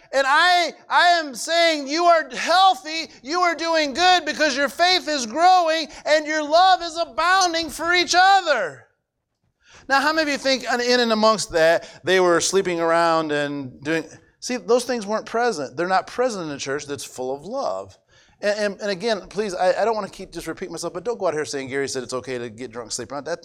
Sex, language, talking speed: male, English, 220 wpm